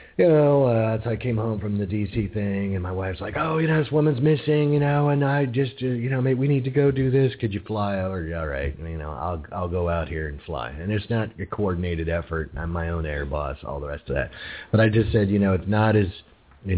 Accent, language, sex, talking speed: American, English, male, 270 wpm